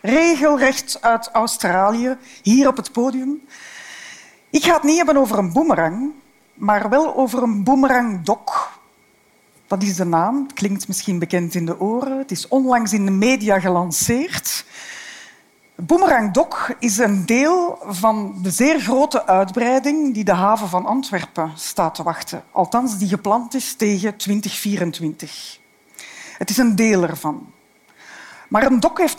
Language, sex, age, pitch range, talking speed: Dutch, female, 50-69, 180-255 Hz, 145 wpm